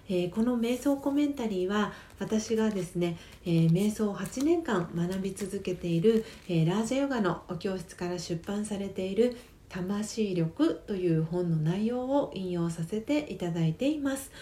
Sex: female